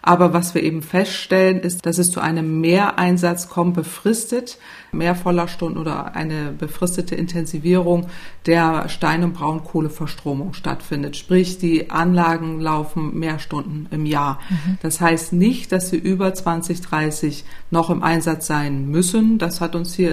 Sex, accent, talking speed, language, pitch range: female, German, 145 wpm, German, 160-180 Hz